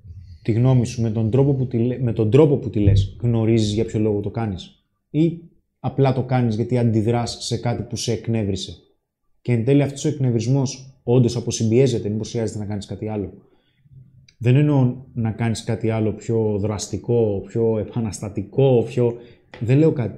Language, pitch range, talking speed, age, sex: Greek, 105-130 Hz, 160 wpm, 20-39, male